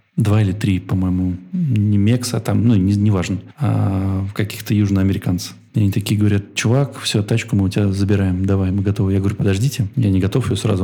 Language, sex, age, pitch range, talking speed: Russian, male, 20-39, 95-115 Hz, 195 wpm